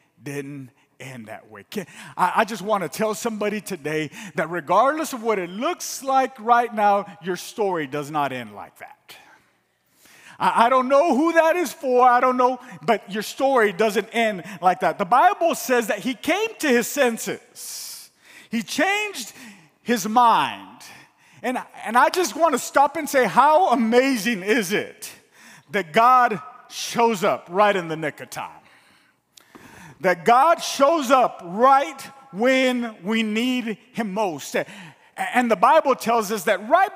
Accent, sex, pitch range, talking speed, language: American, male, 205-265 Hz, 155 wpm, English